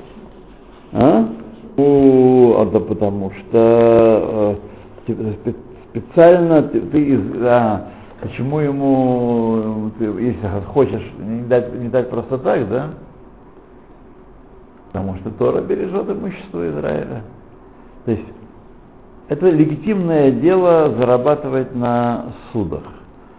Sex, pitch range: male, 100-130 Hz